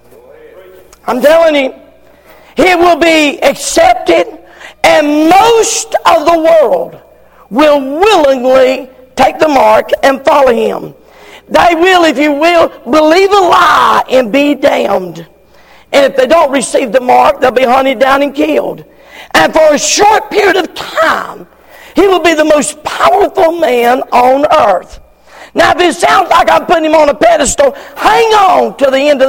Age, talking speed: 50-69, 160 wpm